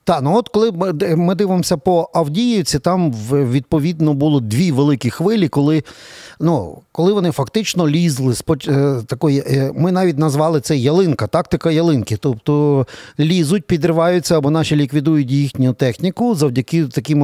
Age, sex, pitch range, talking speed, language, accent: 40-59, male, 130-170 Hz, 135 wpm, Ukrainian, native